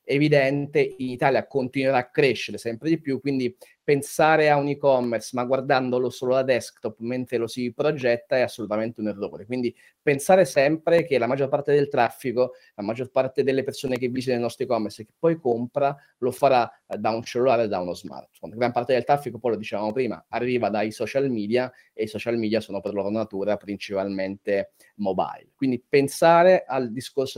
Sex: male